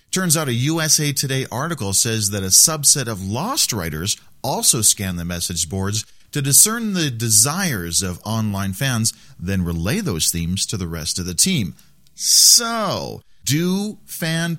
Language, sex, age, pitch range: English, male, 40-59, 105-145 Hz